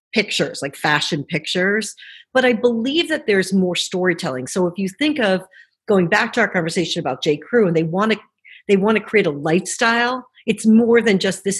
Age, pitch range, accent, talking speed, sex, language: 50-69, 170-220 Hz, American, 200 wpm, female, English